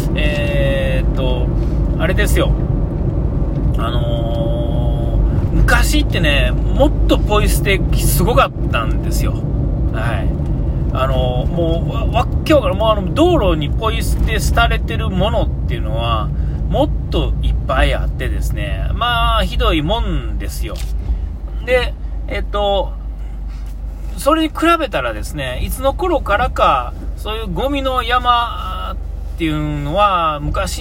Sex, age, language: male, 40-59, Japanese